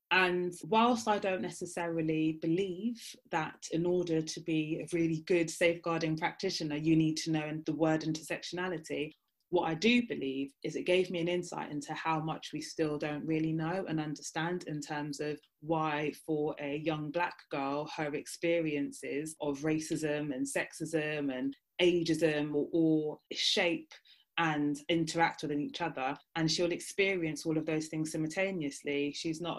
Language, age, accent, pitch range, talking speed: English, 20-39, British, 155-175 Hz, 160 wpm